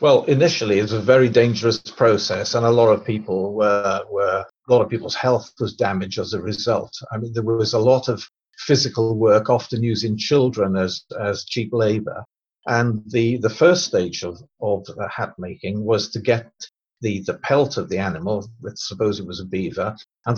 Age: 50-69